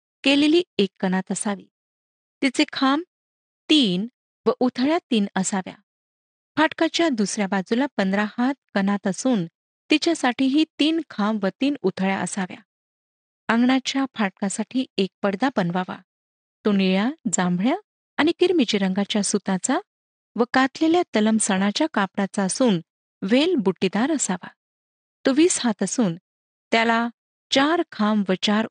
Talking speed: 115 wpm